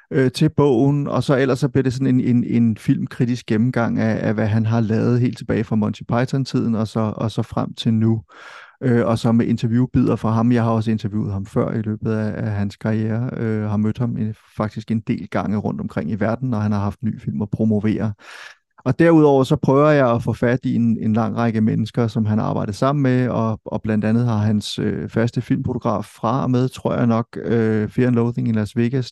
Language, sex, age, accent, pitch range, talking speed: Danish, male, 30-49, native, 110-125 Hz, 220 wpm